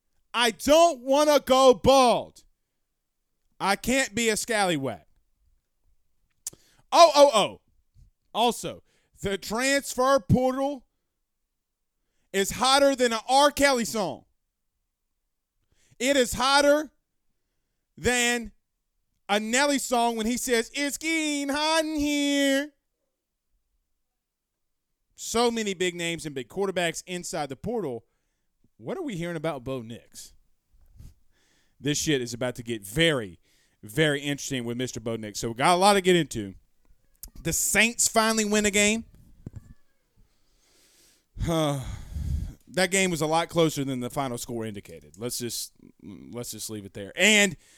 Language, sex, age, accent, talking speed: English, male, 30-49, American, 130 wpm